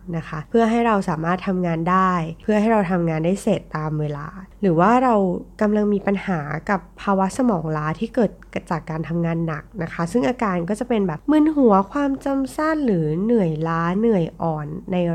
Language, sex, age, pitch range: Thai, female, 20-39, 165-215 Hz